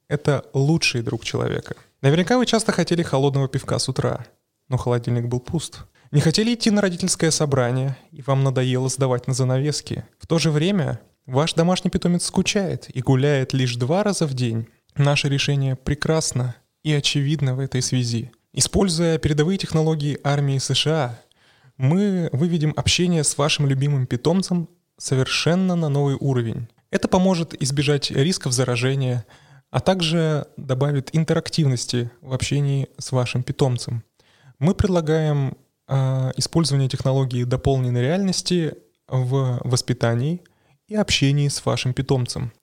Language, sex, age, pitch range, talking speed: Russian, male, 20-39, 125-160 Hz, 135 wpm